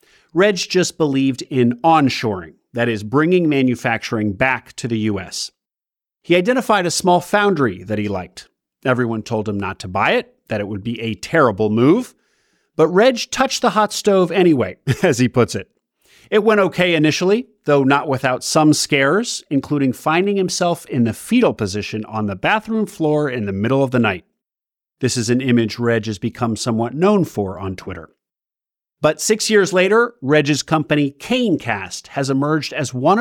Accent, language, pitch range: American, English, 115-180 Hz